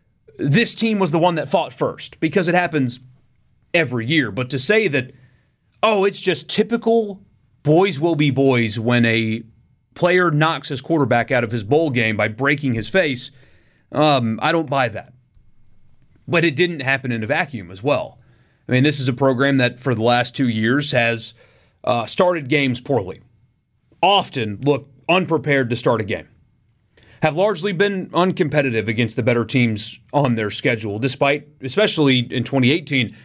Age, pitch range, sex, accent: 30-49, 120-155 Hz, male, American